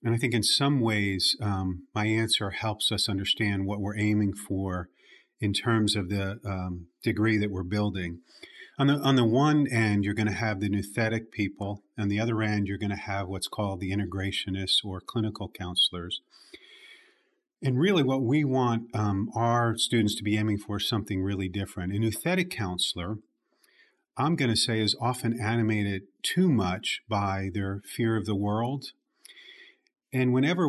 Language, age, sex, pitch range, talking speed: English, 40-59, male, 100-125 Hz, 175 wpm